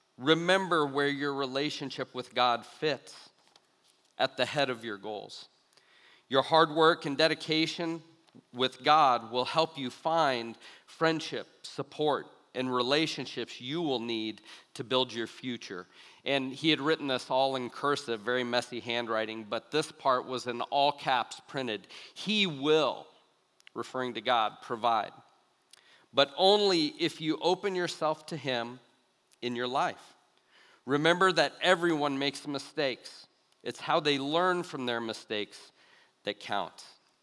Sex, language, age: male, English, 40-59